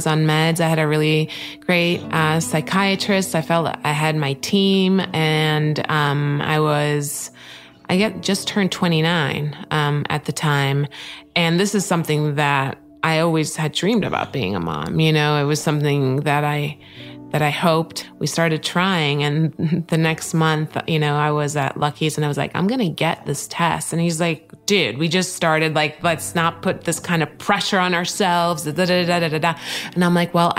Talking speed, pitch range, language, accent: 185 wpm, 150-180 Hz, English, American